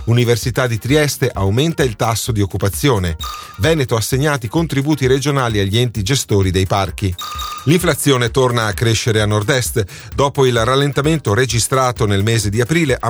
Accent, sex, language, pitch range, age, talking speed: native, male, Italian, 100-135 Hz, 40-59, 145 wpm